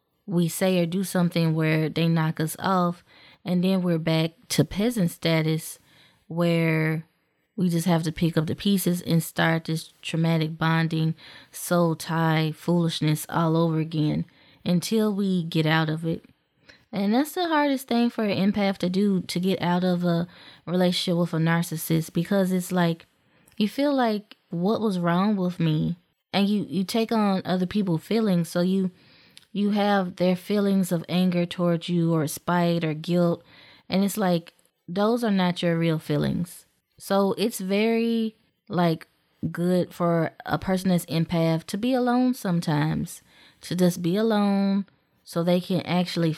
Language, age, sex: English, 20-39, female